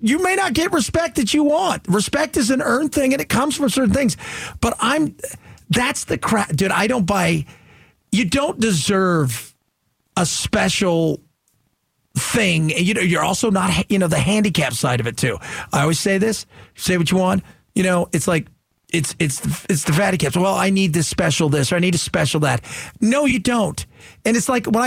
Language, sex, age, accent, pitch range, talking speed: English, male, 40-59, American, 160-240 Hz, 205 wpm